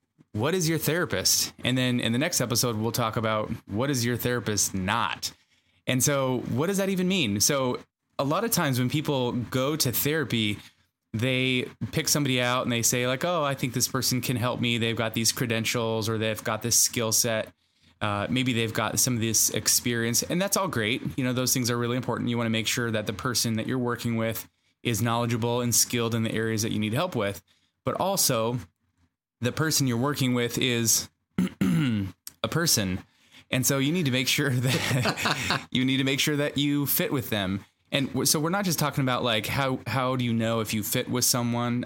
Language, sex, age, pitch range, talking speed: English, male, 20-39, 110-130 Hz, 215 wpm